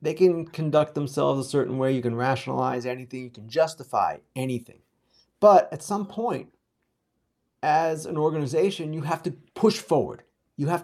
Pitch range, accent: 140-185 Hz, American